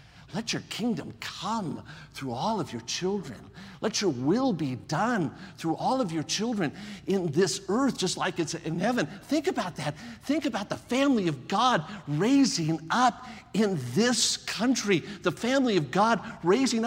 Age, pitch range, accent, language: 50-69, 180-250 Hz, American, English